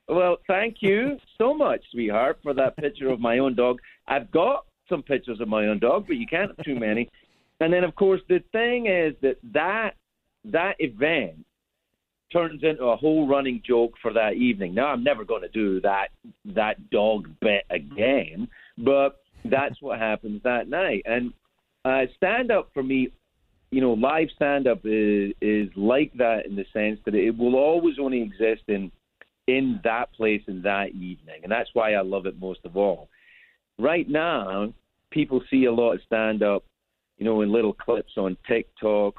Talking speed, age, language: 180 wpm, 40-59, English